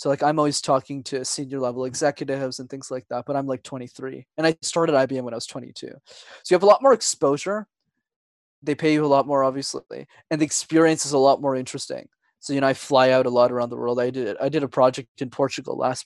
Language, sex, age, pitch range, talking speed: English, male, 20-39, 130-165 Hz, 245 wpm